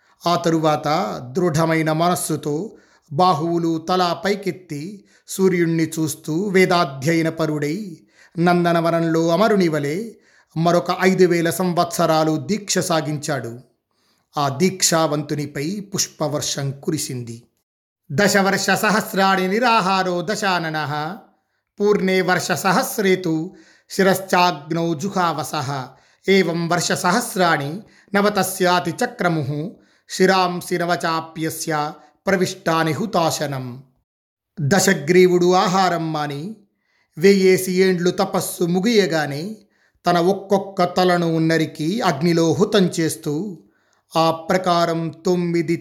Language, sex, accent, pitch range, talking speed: Telugu, male, native, 160-185 Hz, 70 wpm